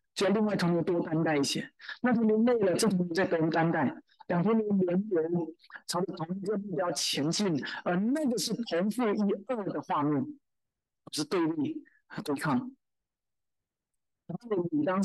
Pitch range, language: 165-215 Hz, Chinese